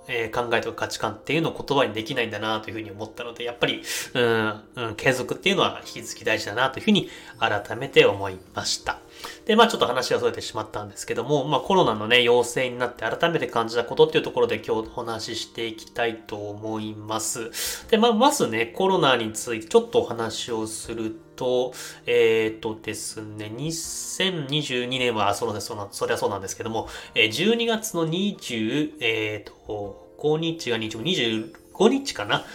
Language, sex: Japanese, male